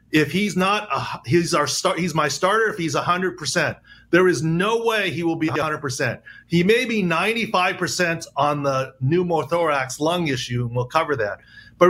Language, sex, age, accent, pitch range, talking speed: English, male, 40-59, American, 155-195 Hz, 175 wpm